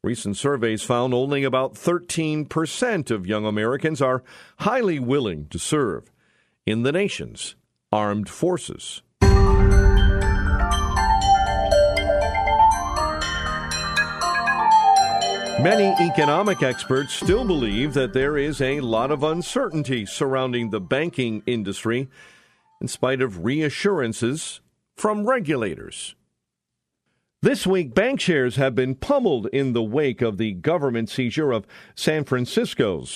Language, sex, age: English, male, 50-69